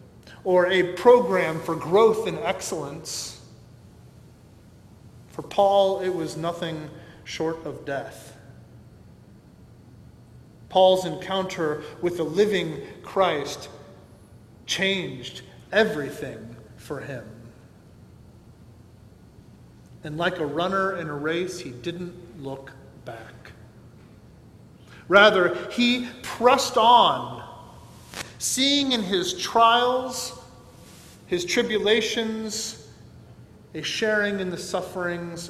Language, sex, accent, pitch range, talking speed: English, male, American, 135-195 Hz, 85 wpm